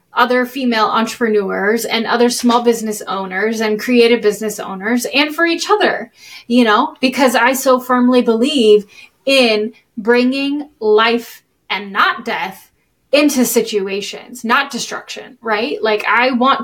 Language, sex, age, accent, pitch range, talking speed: English, female, 10-29, American, 210-250 Hz, 135 wpm